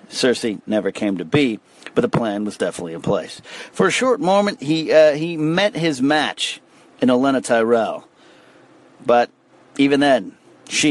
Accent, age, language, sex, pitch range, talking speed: American, 50-69, English, male, 110-135 Hz, 160 wpm